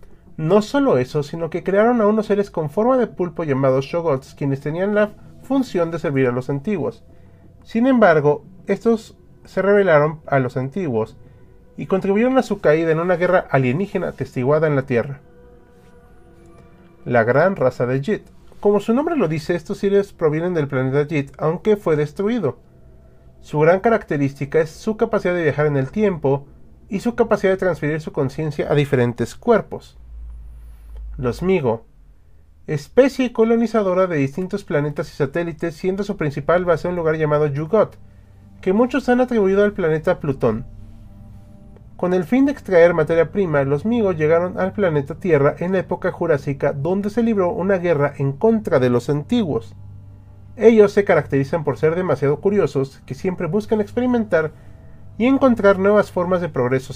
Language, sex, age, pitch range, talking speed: Spanish, male, 40-59, 135-200 Hz, 160 wpm